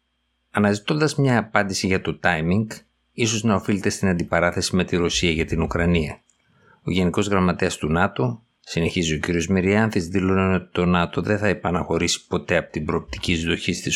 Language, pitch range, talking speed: Greek, 80-100 Hz, 170 wpm